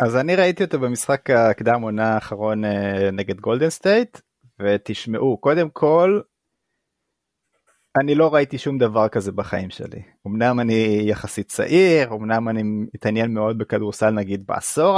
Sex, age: male, 20-39